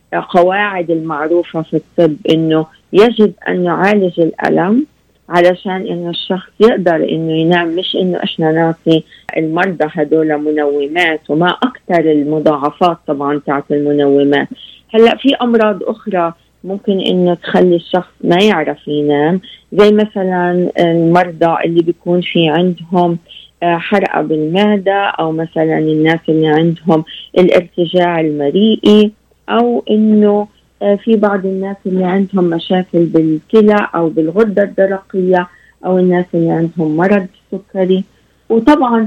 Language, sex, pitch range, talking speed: Arabic, female, 165-205 Hz, 115 wpm